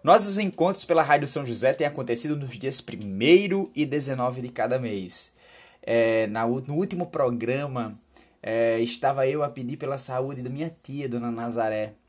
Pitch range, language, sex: 115-135 Hz, Portuguese, male